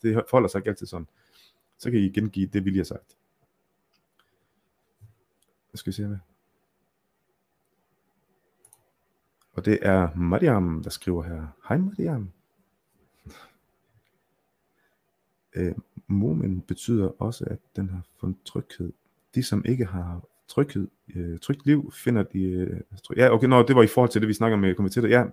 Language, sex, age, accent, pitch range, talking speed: Danish, male, 30-49, native, 95-115 Hz, 155 wpm